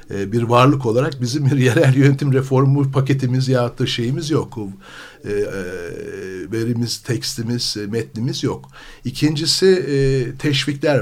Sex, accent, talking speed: male, native, 120 wpm